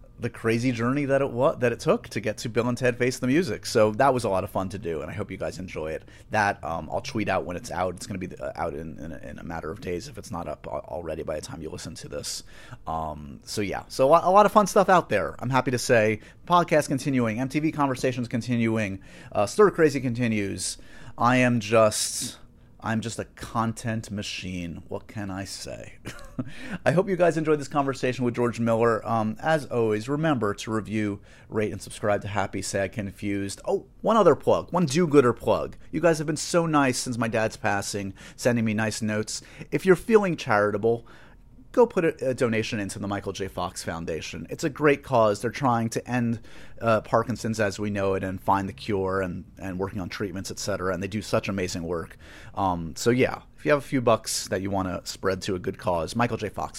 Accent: American